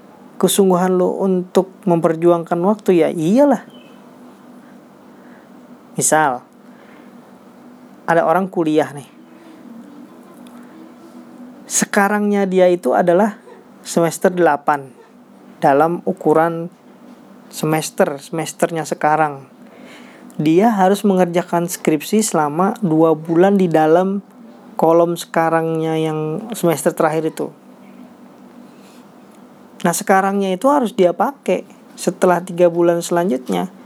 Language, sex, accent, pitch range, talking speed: Indonesian, male, native, 165-240 Hz, 85 wpm